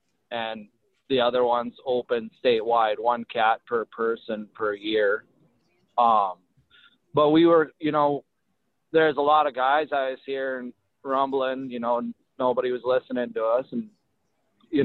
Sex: male